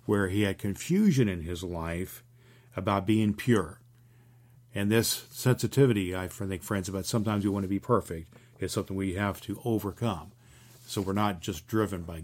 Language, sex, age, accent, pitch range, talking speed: English, male, 50-69, American, 100-120 Hz, 170 wpm